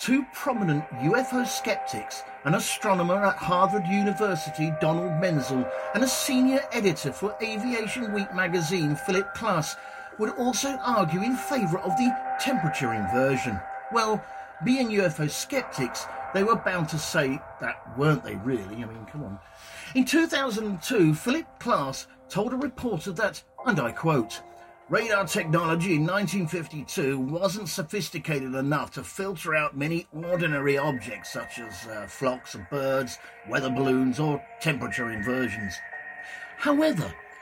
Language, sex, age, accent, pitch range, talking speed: English, male, 50-69, British, 145-235 Hz, 135 wpm